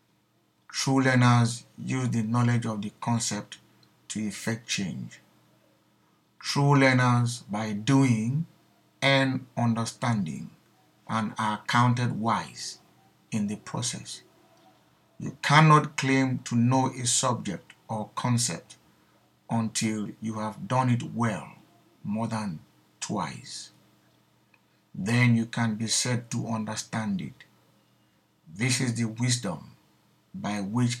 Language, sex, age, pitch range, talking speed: English, male, 60-79, 110-130 Hz, 110 wpm